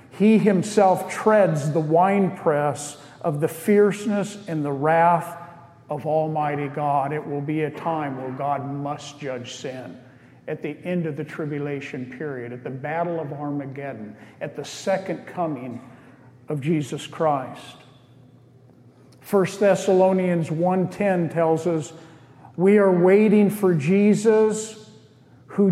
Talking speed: 125 wpm